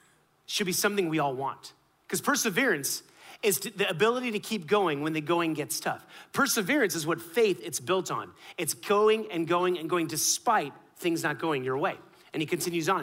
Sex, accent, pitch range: male, American, 155-210 Hz